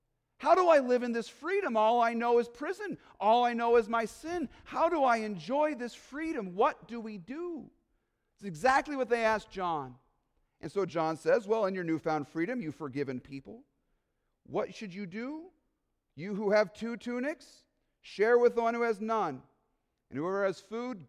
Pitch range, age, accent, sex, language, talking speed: 175-240 Hz, 40-59, American, male, English, 190 wpm